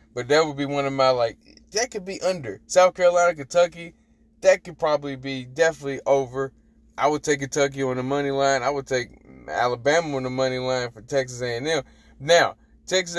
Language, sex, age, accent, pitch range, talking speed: English, male, 20-39, American, 130-170 Hz, 200 wpm